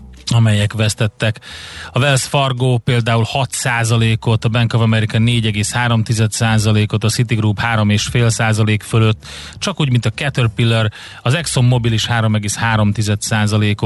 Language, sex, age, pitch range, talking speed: Hungarian, male, 30-49, 110-125 Hz, 120 wpm